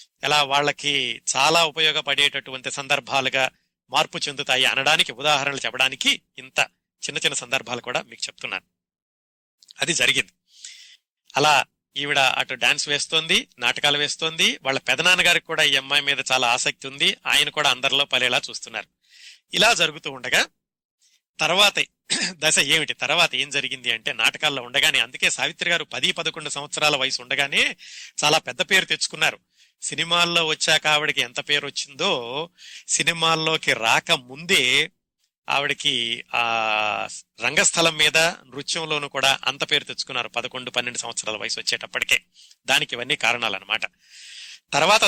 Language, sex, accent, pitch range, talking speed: Telugu, male, native, 130-160 Hz, 120 wpm